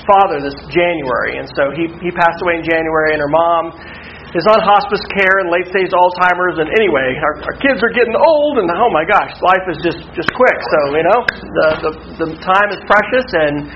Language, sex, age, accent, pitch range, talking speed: English, male, 40-59, American, 165-215 Hz, 215 wpm